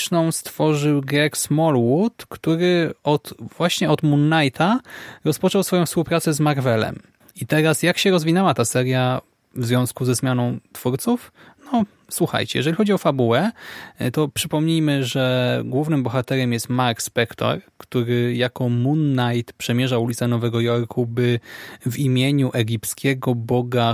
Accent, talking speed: native, 135 wpm